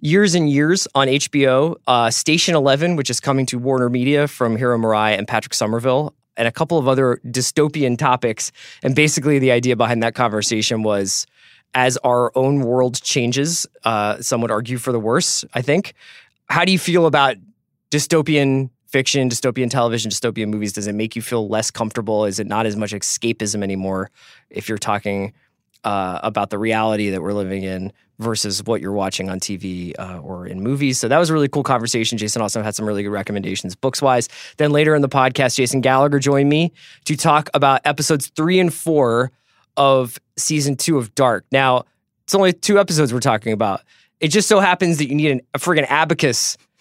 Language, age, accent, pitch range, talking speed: English, 20-39, American, 110-145 Hz, 190 wpm